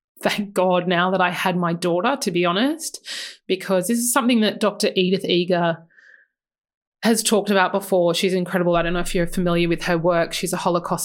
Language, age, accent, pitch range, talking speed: English, 20-39, Australian, 175-200 Hz, 200 wpm